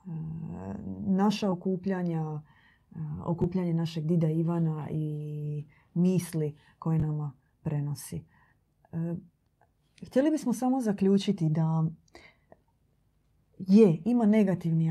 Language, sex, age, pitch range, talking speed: Croatian, female, 30-49, 155-190 Hz, 75 wpm